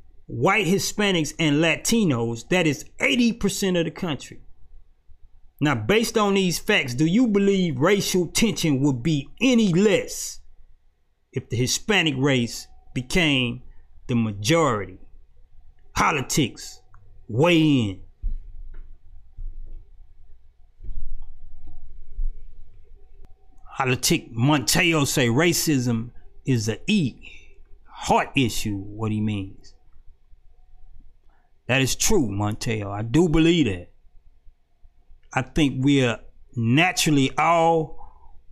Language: English